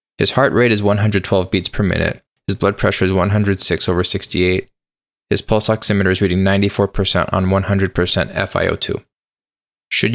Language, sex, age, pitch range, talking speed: English, male, 20-39, 95-105 Hz, 150 wpm